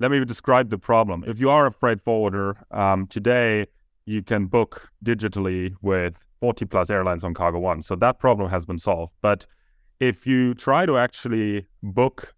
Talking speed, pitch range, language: 175 wpm, 100-120 Hz, English